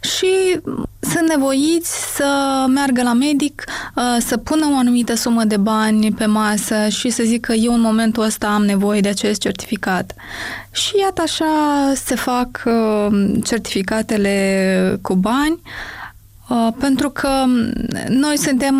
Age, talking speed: 20-39, 130 wpm